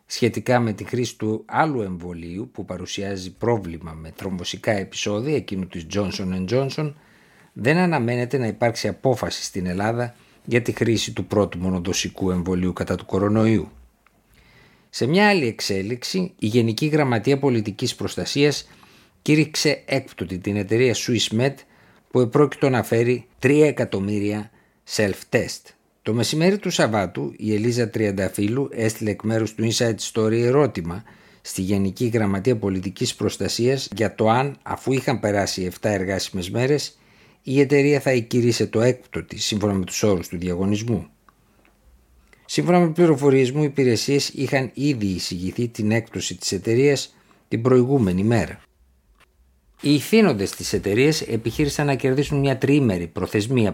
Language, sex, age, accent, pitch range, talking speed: Greek, male, 50-69, native, 95-130 Hz, 135 wpm